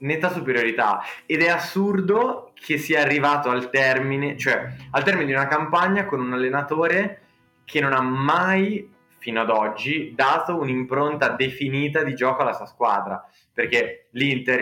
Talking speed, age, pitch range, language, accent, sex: 150 wpm, 20-39, 120-140 Hz, Italian, native, male